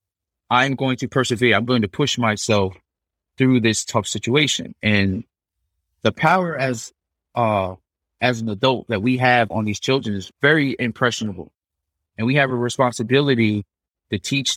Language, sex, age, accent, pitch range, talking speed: English, male, 30-49, American, 90-125 Hz, 150 wpm